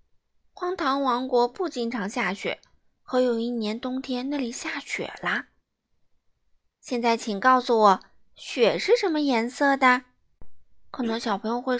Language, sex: Chinese, female